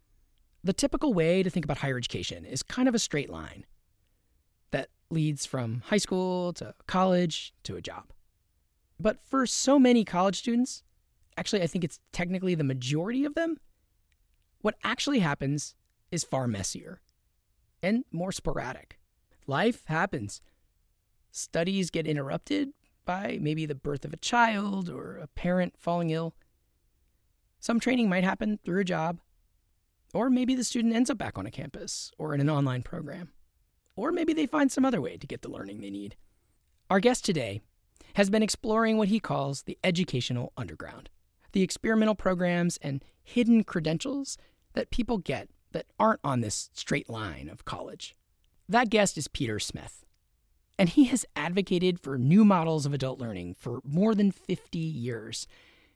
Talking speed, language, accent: 160 wpm, English, American